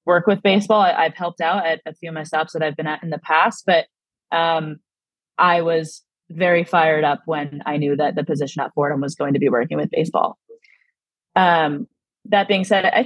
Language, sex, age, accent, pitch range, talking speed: English, female, 20-39, American, 155-185 Hz, 215 wpm